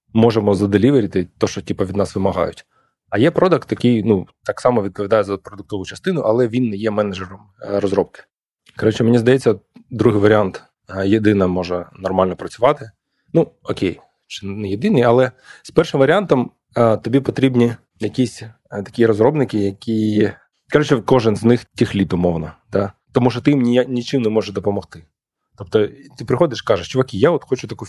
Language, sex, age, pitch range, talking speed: Ukrainian, male, 20-39, 100-125 Hz, 155 wpm